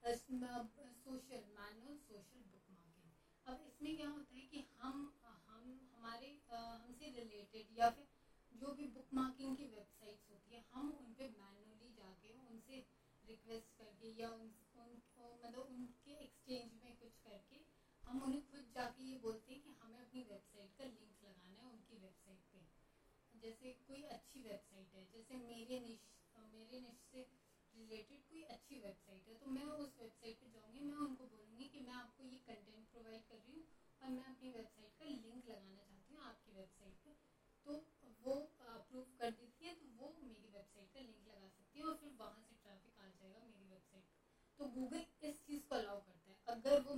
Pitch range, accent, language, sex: 215-260 Hz, native, Hindi, female